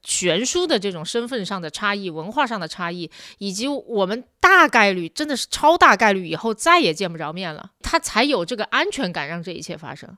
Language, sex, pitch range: Chinese, female, 180-255 Hz